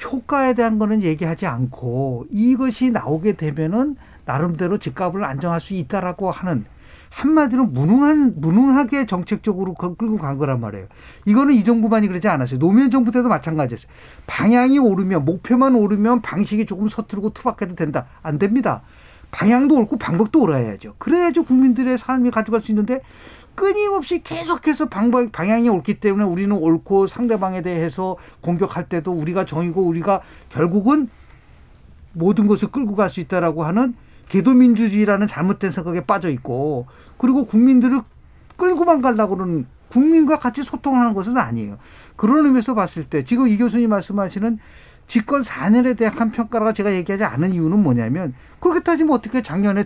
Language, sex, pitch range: Korean, male, 170-250 Hz